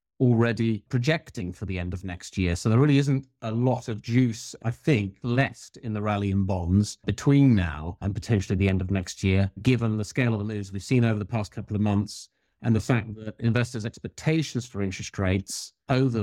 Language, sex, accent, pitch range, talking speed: English, male, British, 100-125 Hz, 210 wpm